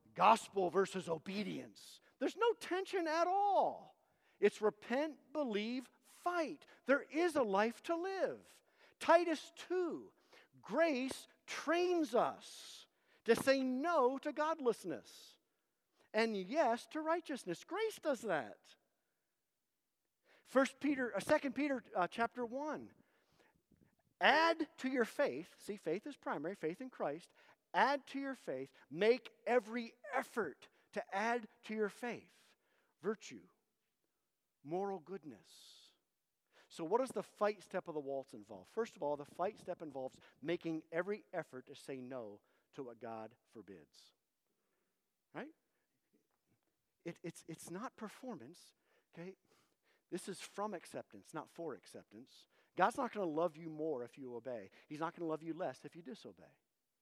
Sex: male